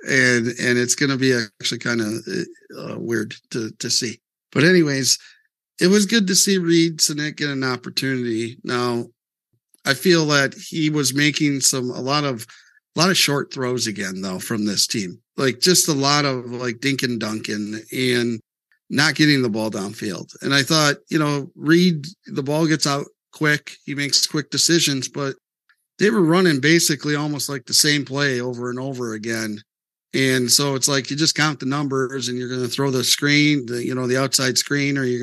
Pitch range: 125-150 Hz